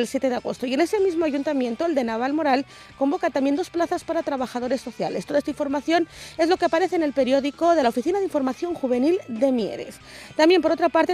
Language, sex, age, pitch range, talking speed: Spanish, female, 30-49, 255-330 Hz, 220 wpm